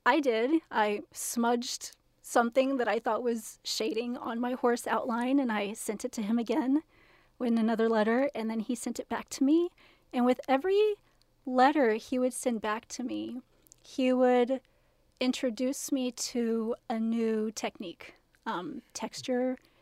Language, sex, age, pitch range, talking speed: English, female, 30-49, 225-255 Hz, 155 wpm